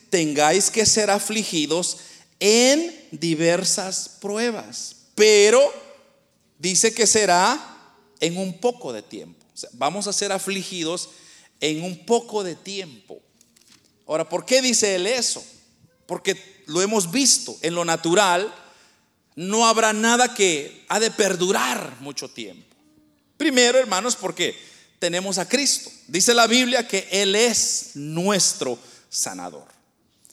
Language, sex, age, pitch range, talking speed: Spanish, male, 40-59, 190-255 Hz, 120 wpm